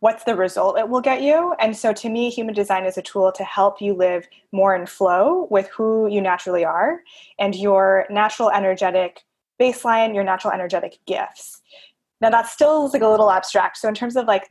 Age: 20-39